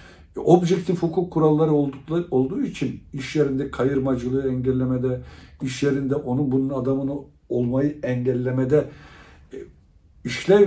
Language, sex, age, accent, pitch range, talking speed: Turkish, male, 60-79, native, 120-155 Hz, 95 wpm